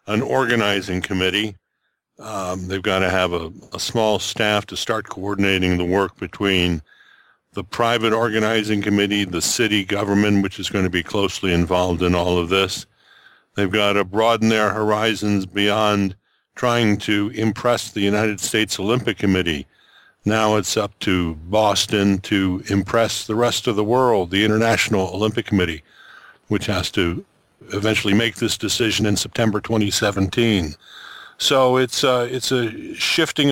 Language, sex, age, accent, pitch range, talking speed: English, male, 60-79, American, 95-115 Hz, 150 wpm